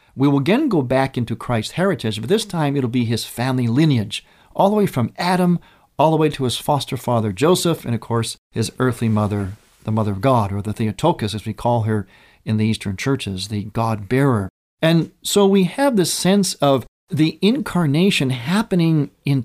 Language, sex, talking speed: English, male, 195 wpm